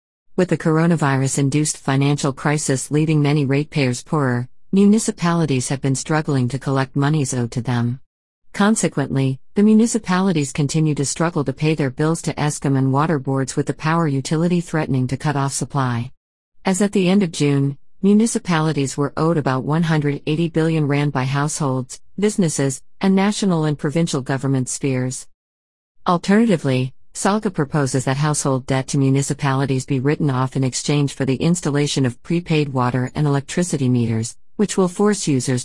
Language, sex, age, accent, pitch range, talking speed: English, female, 50-69, American, 135-165 Hz, 155 wpm